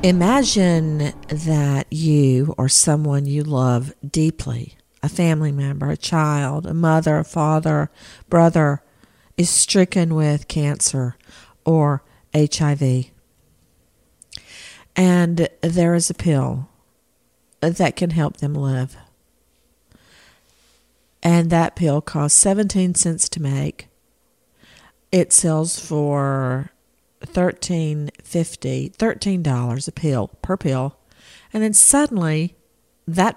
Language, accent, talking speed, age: English, American, 105 wpm, 50-69